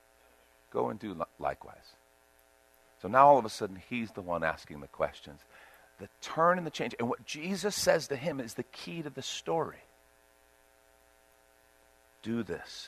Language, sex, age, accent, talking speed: English, male, 50-69, American, 165 wpm